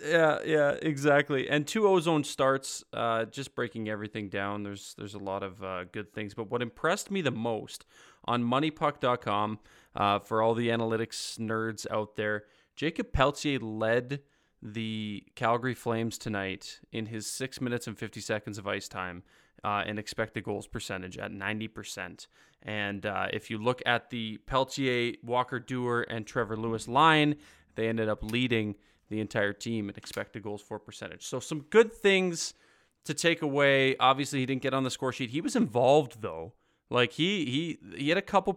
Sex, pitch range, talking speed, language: male, 110-140 Hz, 175 wpm, English